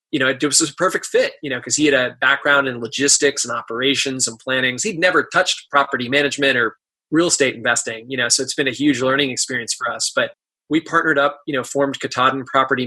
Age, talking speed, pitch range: 20-39, 230 wpm, 130-160 Hz